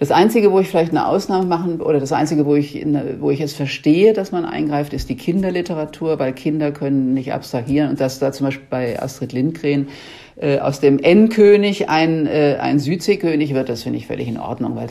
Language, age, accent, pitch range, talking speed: German, 50-69, German, 135-160 Hz, 215 wpm